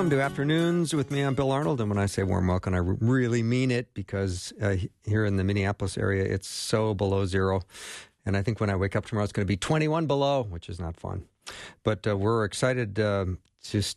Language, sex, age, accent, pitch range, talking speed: English, male, 50-69, American, 100-130 Hz, 230 wpm